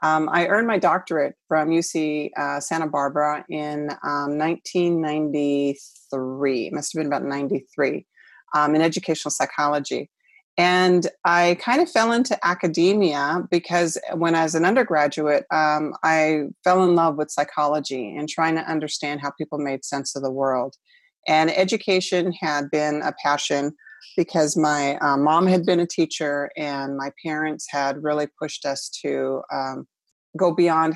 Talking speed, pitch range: 150 wpm, 145-175 Hz